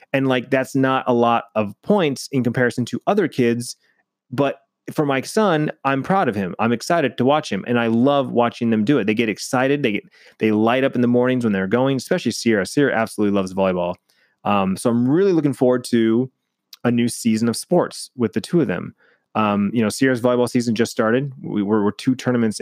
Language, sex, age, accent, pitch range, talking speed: English, male, 30-49, American, 105-125 Hz, 220 wpm